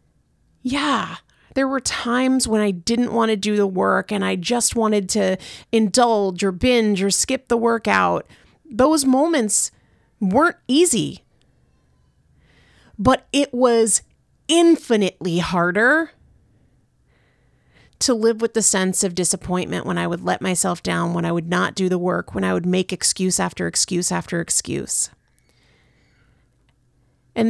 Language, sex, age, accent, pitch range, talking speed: English, female, 30-49, American, 165-230 Hz, 140 wpm